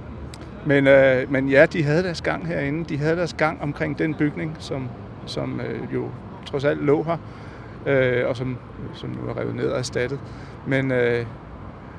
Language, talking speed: Danish, 160 wpm